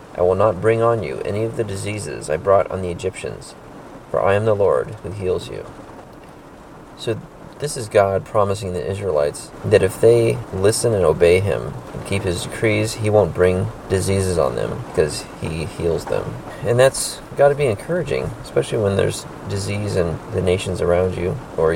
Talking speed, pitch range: 185 wpm, 95-125 Hz